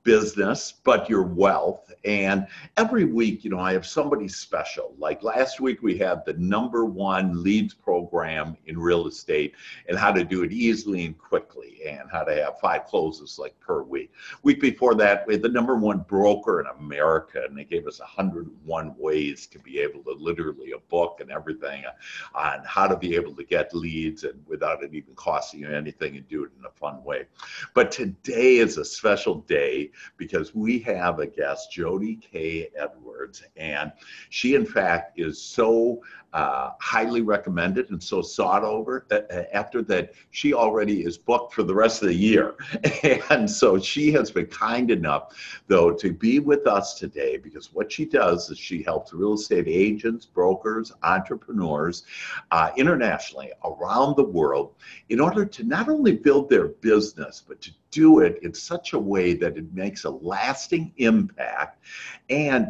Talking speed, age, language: 175 wpm, 60-79, English